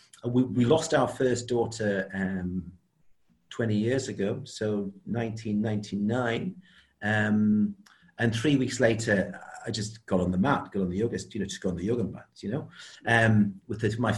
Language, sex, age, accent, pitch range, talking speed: English, male, 40-59, British, 100-130 Hz, 170 wpm